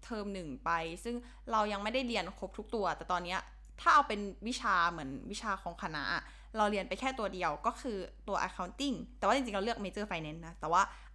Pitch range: 200-255 Hz